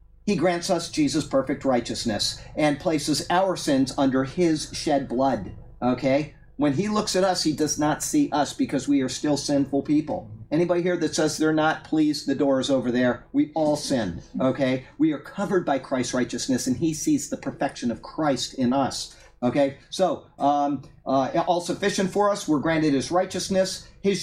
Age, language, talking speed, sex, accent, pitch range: 50-69, English, 185 wpm, male, American, 140-195 Hz